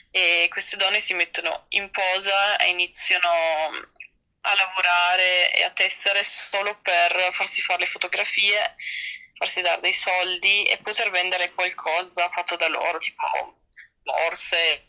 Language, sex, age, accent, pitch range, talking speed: Italian, female, 20-39, native, 170-200 Hz, 135 wpm